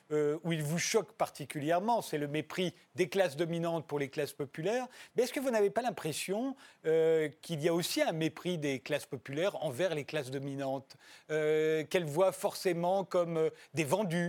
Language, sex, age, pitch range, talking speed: French, male, 40-59, 155-195 Hz, 190 wpm